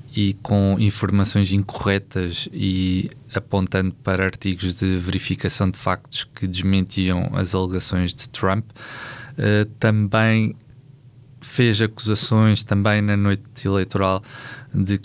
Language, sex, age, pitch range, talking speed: Portuguese, male, 20-39, 95-115 Hz, 105 wpm